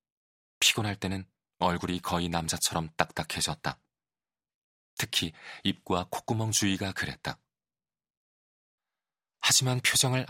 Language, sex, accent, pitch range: Korean, male, native, 85-100 Hz